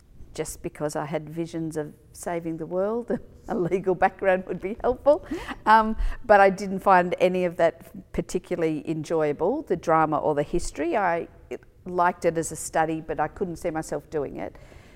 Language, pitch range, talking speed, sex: English, 160-190 Hz, 175 wpm, female